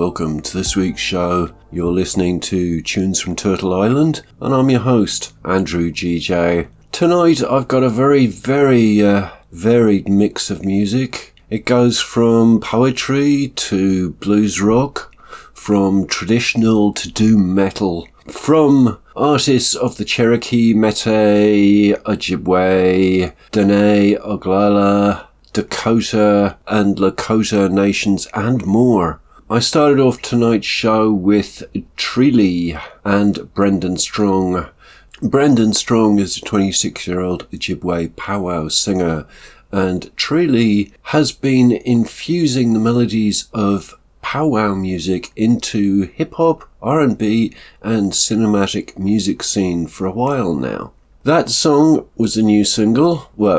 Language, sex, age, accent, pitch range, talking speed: English, male, 50-69, British, 95-120 Hz, 115 wpm